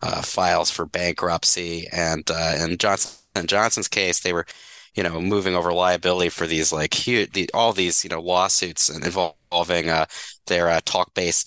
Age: 20-39